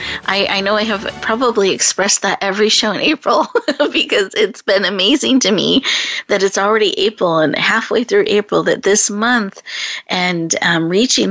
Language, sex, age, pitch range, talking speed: English, female, 30-49, 180-225 Hz, 170 wpm